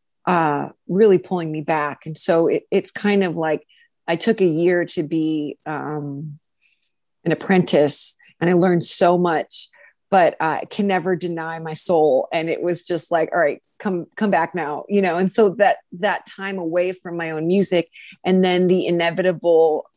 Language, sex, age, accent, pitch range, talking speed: English, female, 20-39, American, 165-190 Hz, 185 wpm